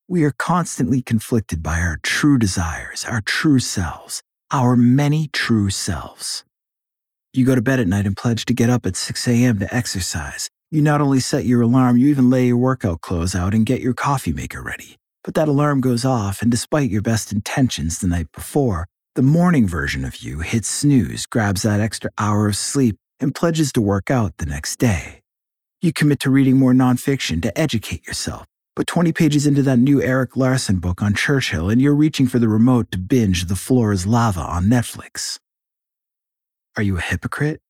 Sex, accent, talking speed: male, American, 195 wpm